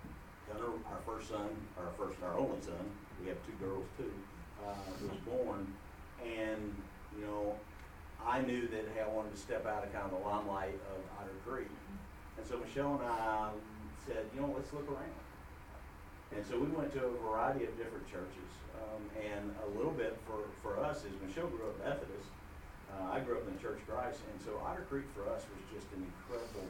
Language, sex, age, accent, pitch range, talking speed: English, male, 50-69, American, 90-115 Hz, 205 wpm